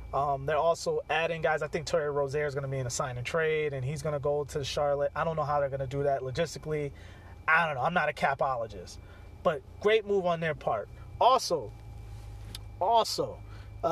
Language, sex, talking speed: English, male, 220 wpm